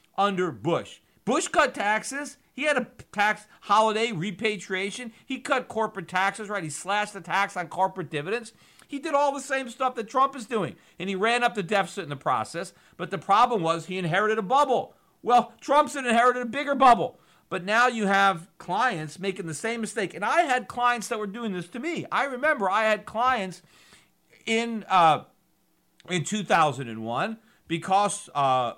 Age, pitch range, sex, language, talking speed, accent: 50-69, 165-230 Hz, male, English, 175 wpm, American